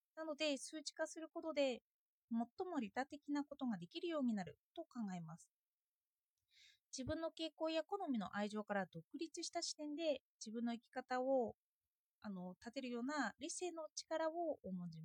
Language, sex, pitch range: Japanese, female, 235-320 Hz